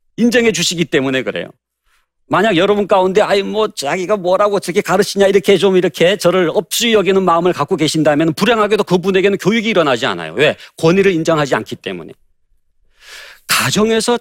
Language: Korean